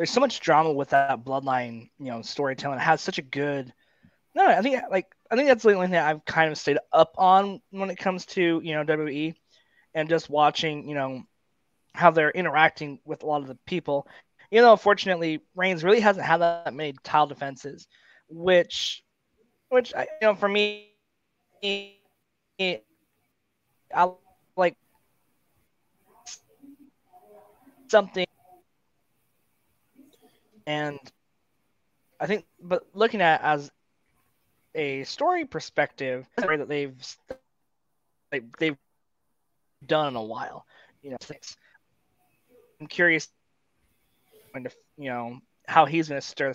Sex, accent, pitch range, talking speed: male, American, 140-190 Hz, 130 wpm